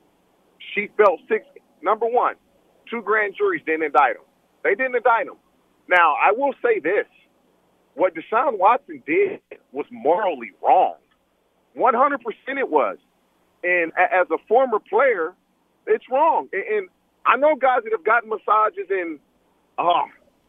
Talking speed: 140 wpm